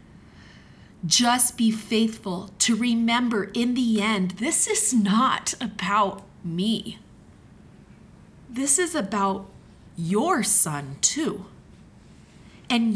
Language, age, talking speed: English, 30-49, 95 wpm